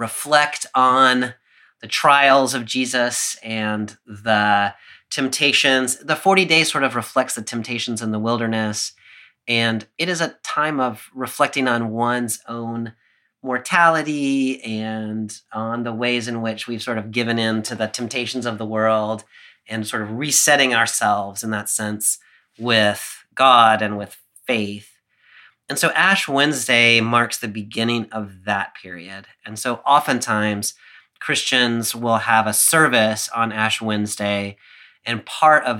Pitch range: 110-125 Hz